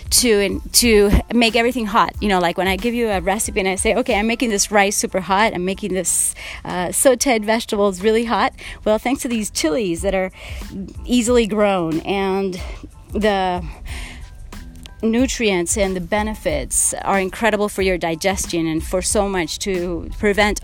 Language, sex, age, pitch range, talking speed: English, female, 30-49, 190-230 Hz, 170 wpm